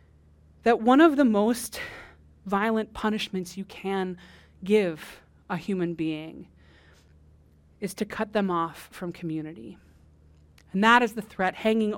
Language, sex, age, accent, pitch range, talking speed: English, female, 20-39, American, 170-215 Hz, 130 wpm